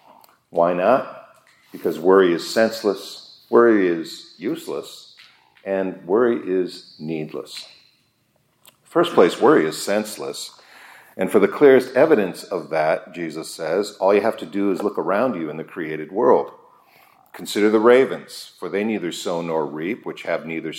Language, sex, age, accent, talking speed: English, male, 50-69, American, 150 wpm